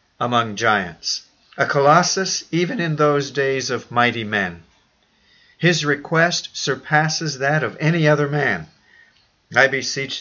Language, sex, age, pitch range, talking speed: English, male, 50-69, 120-150 Hz, 125 wpm